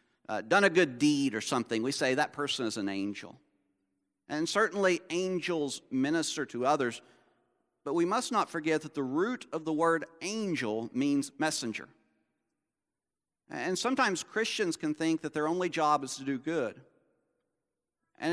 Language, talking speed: English, 155 wpm